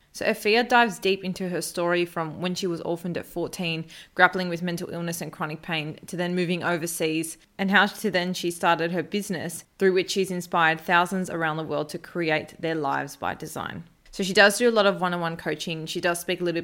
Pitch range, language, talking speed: 165-190 Hz, English, 220 wpm